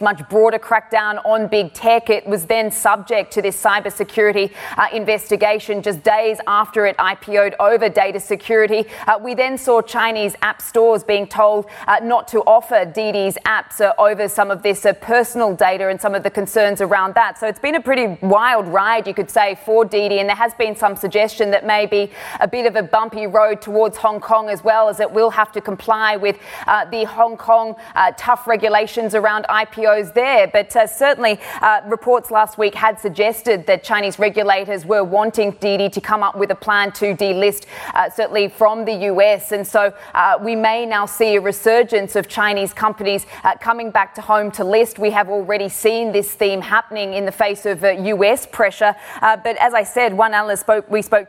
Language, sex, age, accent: English, female, 20-39, Australian